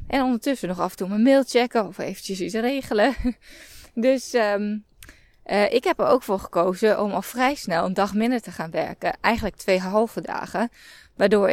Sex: female